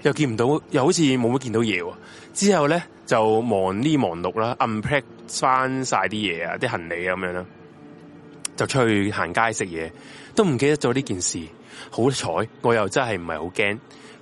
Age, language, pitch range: 20-39, Chinese, 110-170 Hz